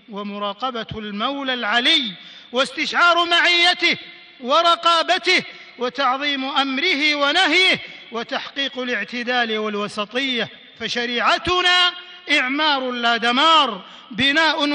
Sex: male